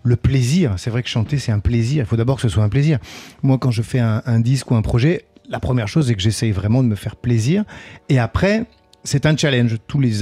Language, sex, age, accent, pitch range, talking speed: French, male, 40-59, French, 115-150 Hz, 265 wpm